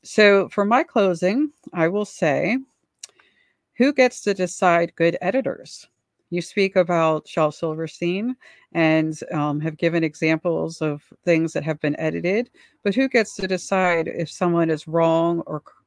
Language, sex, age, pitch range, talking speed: English, female, 50-69, 165-200 Hz, 150 wpm